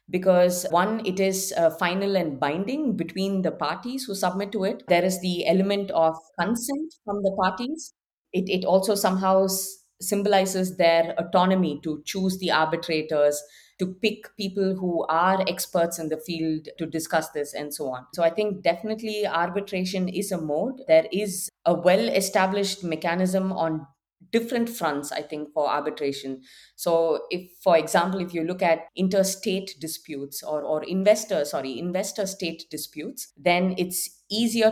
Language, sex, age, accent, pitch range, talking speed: English, female, 20-39, Indian, 160-195 Hz, 155 wpm